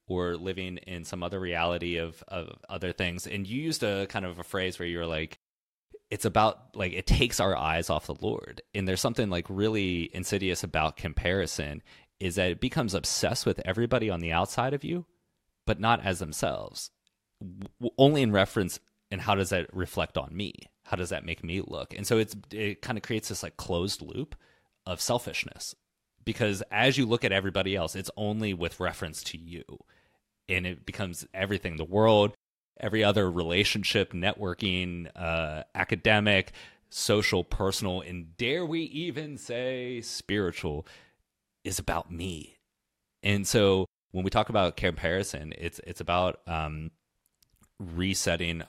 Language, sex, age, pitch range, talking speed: English, male, 30-49, 85-105 Hz, 165 wpm